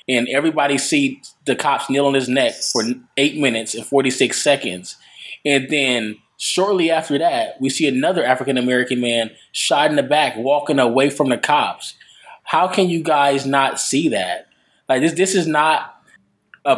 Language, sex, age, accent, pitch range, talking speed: English, male, 20-39, American, 125-145 Hz, 170 wpm